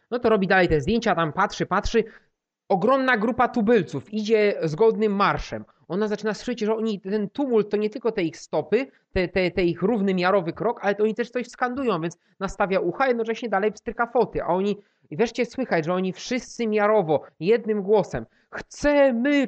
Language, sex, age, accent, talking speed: Polish, male, 30-49, native, 180 wpm